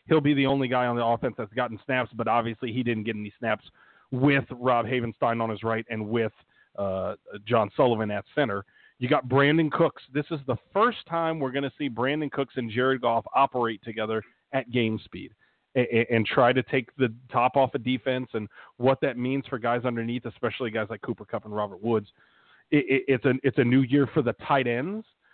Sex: male